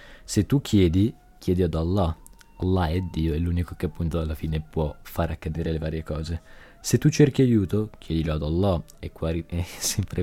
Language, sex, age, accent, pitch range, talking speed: Italian, male, 20-39, native, 85-110 Hz, 190 wpm